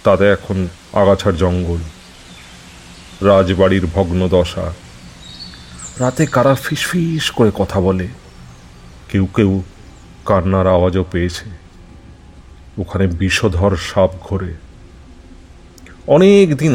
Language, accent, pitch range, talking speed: Bengali, native, 85-105 Hz, 85 wpm